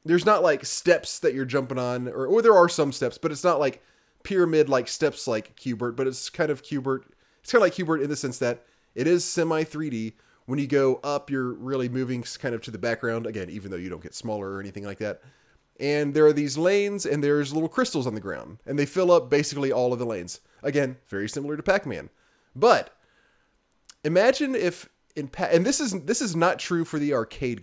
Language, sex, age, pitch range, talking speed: English, male, 30-49, 125-170 Hz, 230 wpm